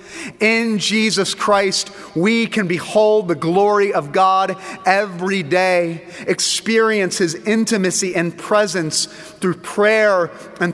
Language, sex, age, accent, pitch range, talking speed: English, male, 30-49, American, 160-205 Hz, 110 wpm